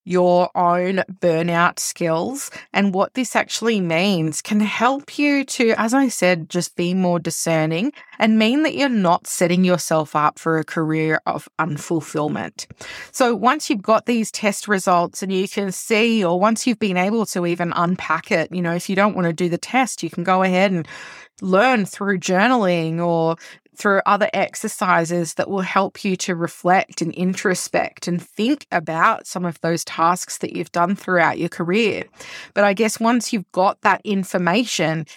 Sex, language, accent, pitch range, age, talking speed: female, English, Australian, 175-220 Hz, 20-39, 175 wpm